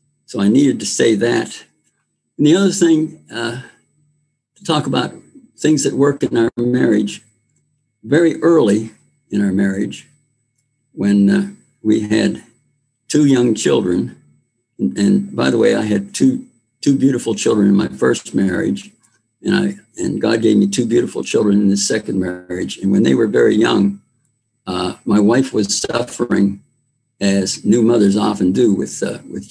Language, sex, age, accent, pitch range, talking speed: English, male, 60-79, American, 100-125 Hz, 160 wpm